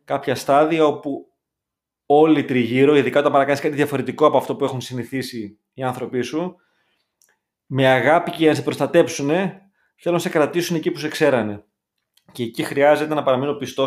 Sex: male